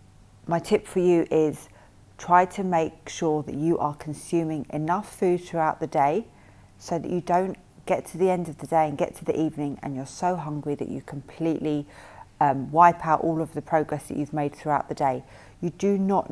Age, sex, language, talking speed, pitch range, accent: 40-59, female, English, 210 wpm, 150-175 Hz, British